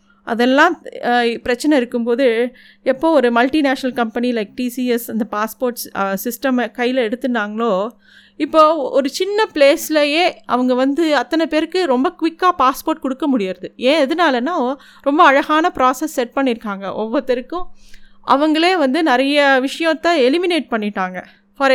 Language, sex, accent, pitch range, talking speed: Tamil, female, native, 245-310 Hz, 115 wpm